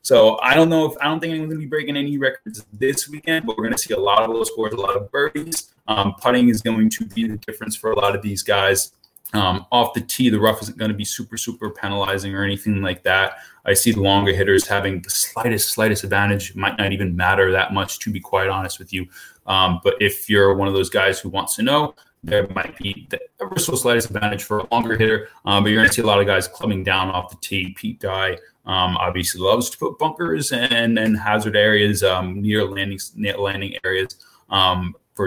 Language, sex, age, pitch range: English, male, 20-39, 100-120 Hz